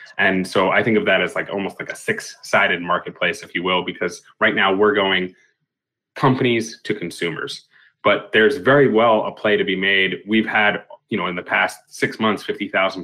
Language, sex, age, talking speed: English, male, 20-39, 200 wpm